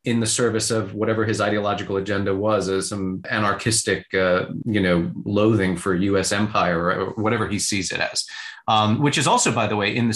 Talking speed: 200 wpm